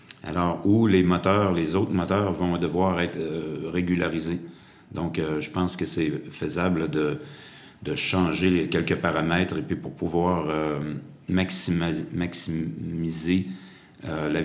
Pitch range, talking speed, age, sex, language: 85-95 Hz, 140 wpm, 40-59, male, French